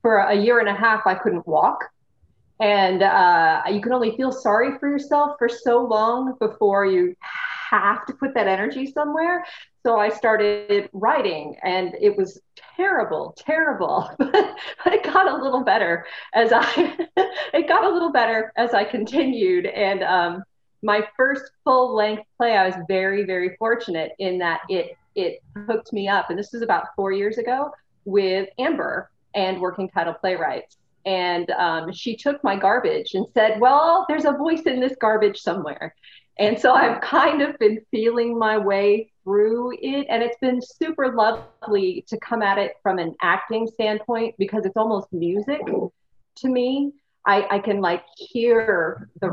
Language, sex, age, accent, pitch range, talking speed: English, female, 30-49, American, 195-265 Hz, 170 wpm